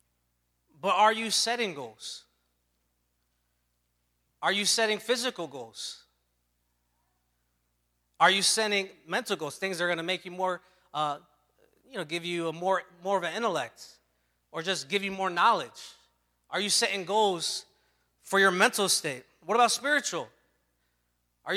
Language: English